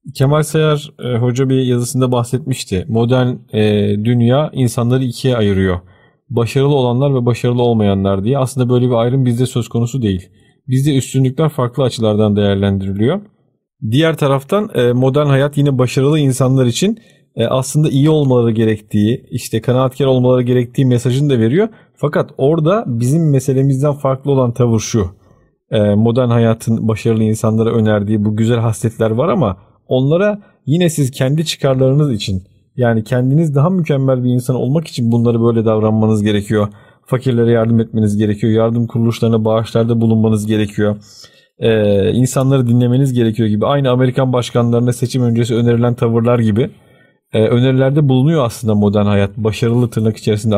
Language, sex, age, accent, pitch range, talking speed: Turkish, male, 40-59, native, 110-135 Hz, 140 wpm